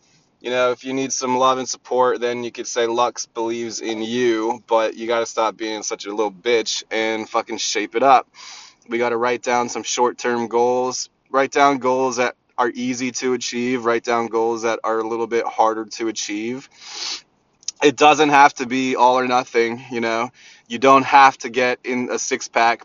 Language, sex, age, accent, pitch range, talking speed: English, male, 20-39, American, 115-130 Hz, 205 wpm